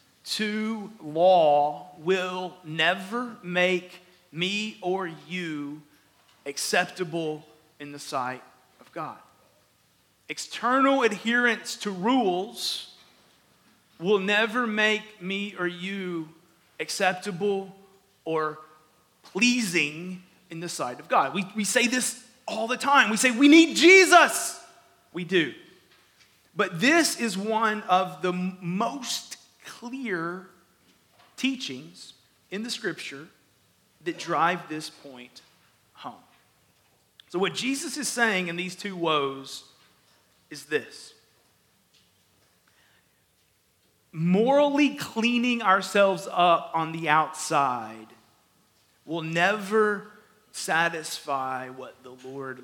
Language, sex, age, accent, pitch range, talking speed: English, male, 30-49, American, 155-215 Hz, 100 wpm